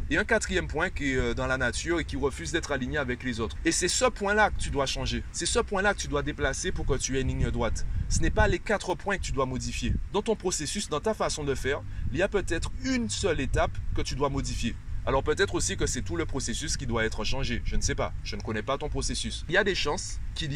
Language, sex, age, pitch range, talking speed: French, male, 30-49, 120-160 Hz, 280 wpm